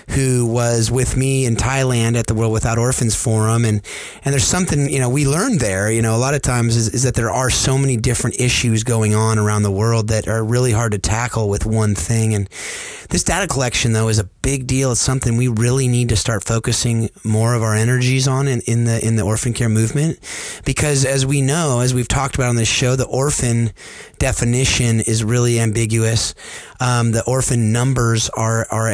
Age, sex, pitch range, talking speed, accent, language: 30-49, male, 110-130 Hz, 215 wpm, American, English